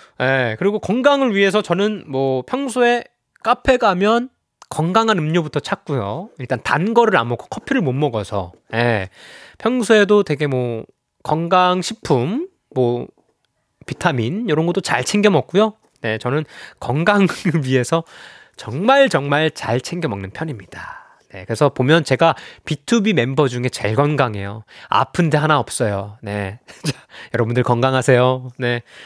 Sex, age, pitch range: male, 20-39, 130-220 Hz